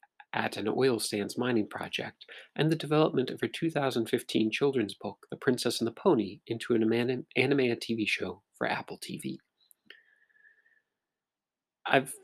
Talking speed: 135 wpm